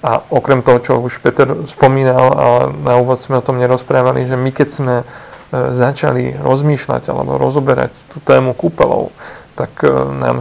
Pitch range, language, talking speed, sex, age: 125-145 Hz, Slovak, 155 wpm, male, 40-59